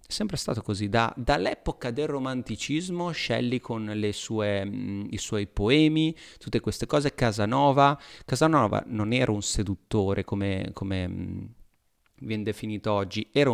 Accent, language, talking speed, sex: native, Italian, 130 wpm, male